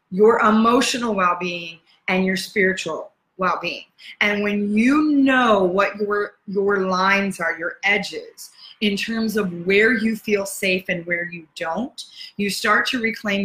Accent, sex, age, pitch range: American, female, 30-49, 175-215 Hz